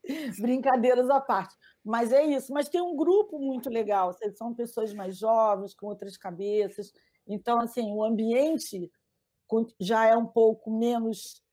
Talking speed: 145 wpm